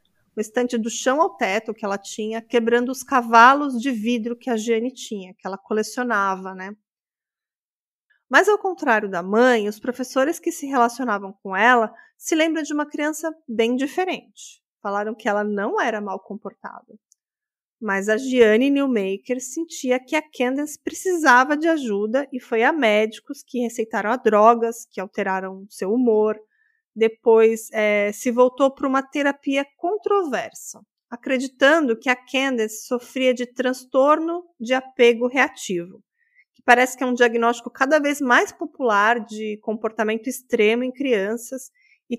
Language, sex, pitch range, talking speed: Portuguese, female, 215-265 Hz, 150 wpm